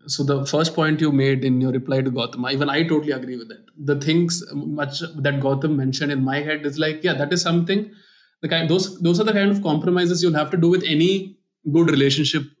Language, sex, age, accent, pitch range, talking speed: English, male, 20-39, Indian, 145-170 Hz, 230 wpm